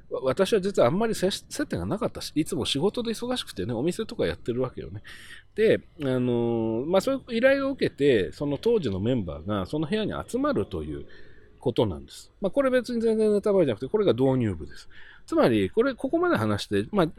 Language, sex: Japanese, male